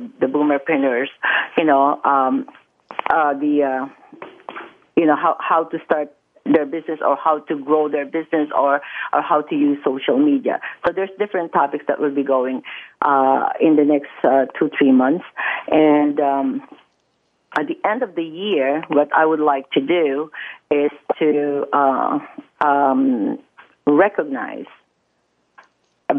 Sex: female